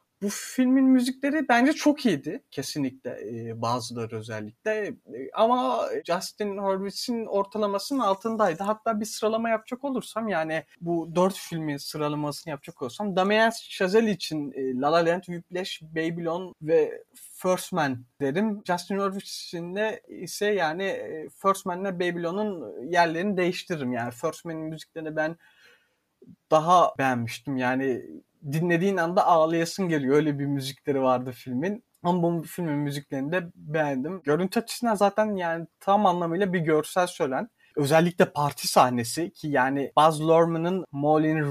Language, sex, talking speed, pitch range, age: Turkish, male, 125 wpm, 145-200 Hz, 30-49